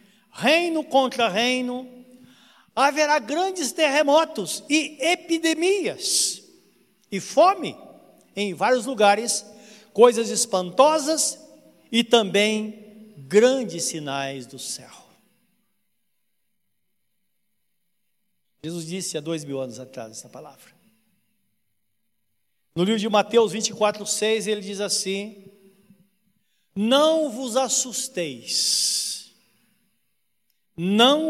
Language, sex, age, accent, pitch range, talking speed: Portuguese, male, 60-79, Brazilian, 190-250 Hz, 80 wpm